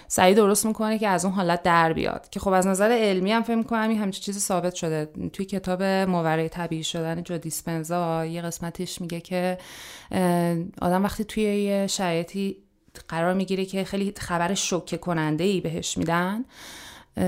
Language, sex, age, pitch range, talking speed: Persian, female, 30-49, 170-205 Hz, 155 wpm